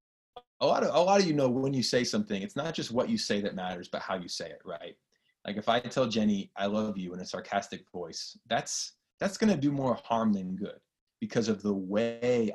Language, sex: English, male